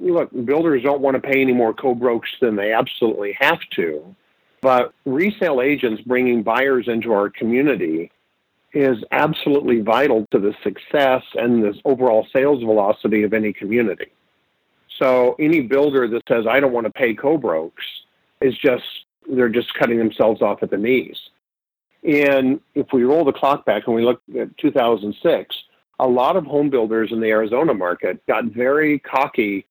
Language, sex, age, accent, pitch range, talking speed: English, male, 50-69, American, 115-140 Hz, 160 wpm